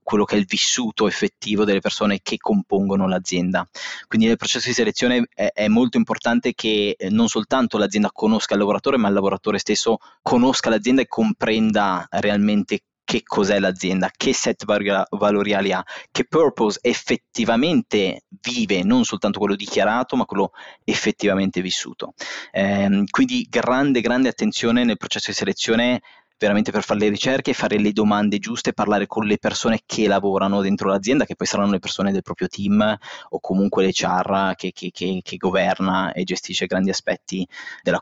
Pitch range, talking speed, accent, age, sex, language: 95-125 Hz, 165 wpm, native, 20-39, male, Italian